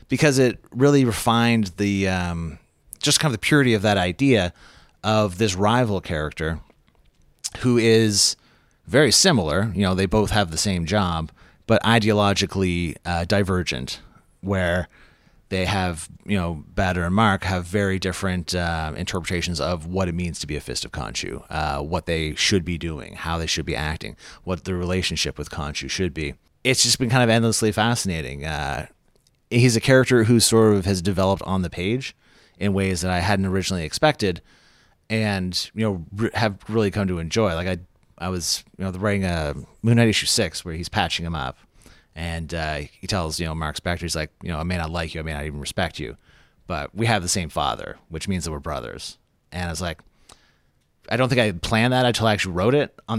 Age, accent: 30-49, American